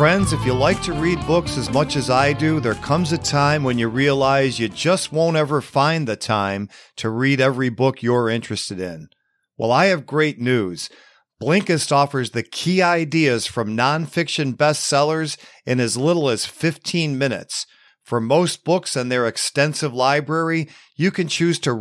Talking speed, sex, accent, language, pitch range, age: 175 wpm, male, American, English, 125-155 Hz, 50-69